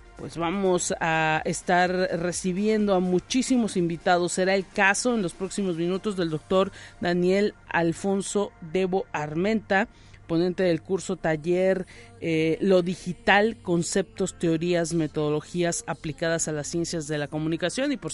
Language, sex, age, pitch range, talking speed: Spanish, male, 40-59, 170-200 Hz, 130 wpm